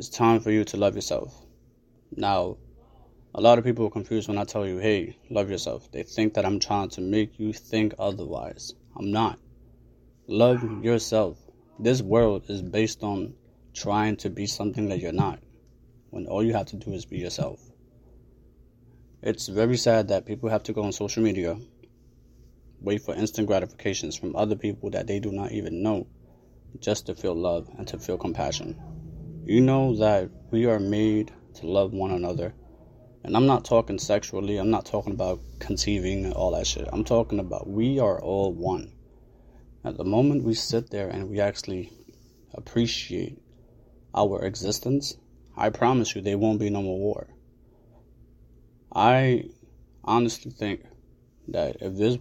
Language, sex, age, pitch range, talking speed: English, male, 20-39, 100-115 Hz, 170 wpm